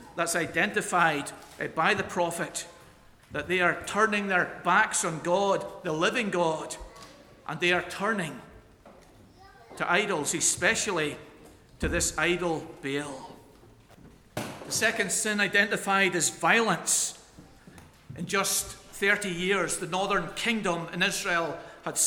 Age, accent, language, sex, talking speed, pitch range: 40-59, British, English, male, 115 wpm, 175-215 Hz